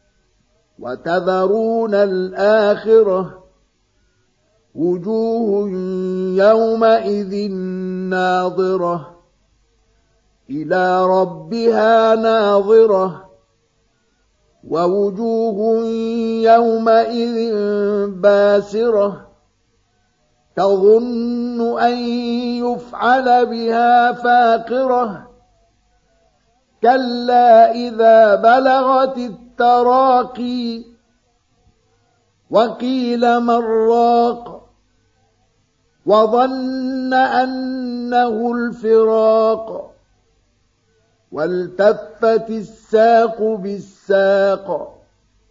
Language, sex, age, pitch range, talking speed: Arabic, male, 50-69, 180-235 Hz, 40 wpm